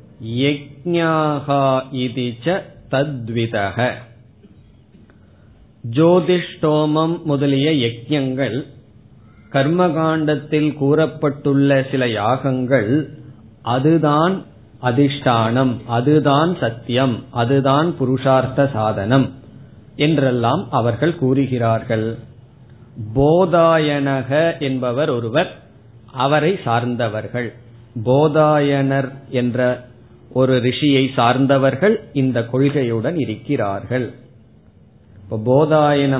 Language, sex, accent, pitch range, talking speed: Tamil, male, native, 120-145 Hz, 50 wpm